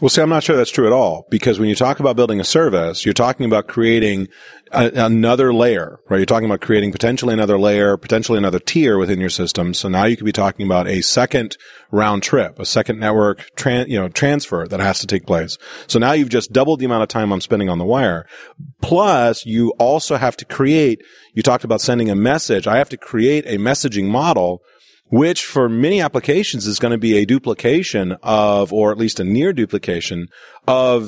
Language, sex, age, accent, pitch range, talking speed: English, male, 30-49, American, 105-130 Hz, 215 wpm